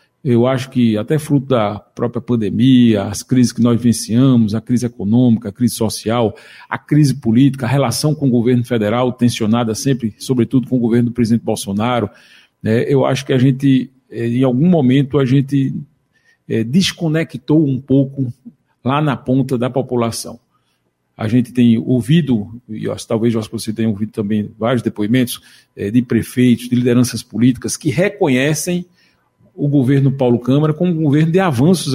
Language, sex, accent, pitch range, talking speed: Portuguese, male, Brazilian, 115-130 Hz, 165 wpm